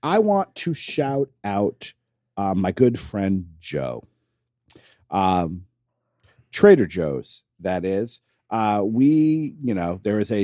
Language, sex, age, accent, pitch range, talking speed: English, male, 40-59, American, 105-135 Hz, 125 wpm